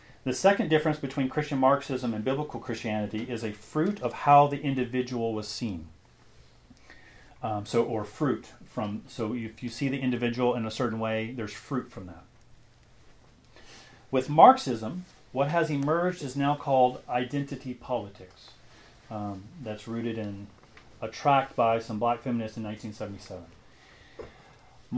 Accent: American